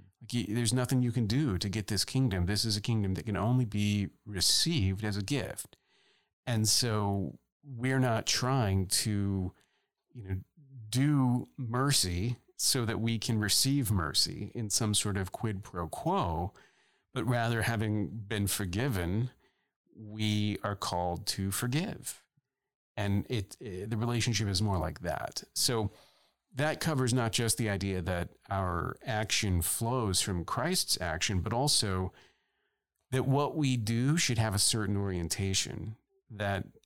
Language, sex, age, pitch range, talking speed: English, male, 40-59, 100-125 Hz, 145 wpm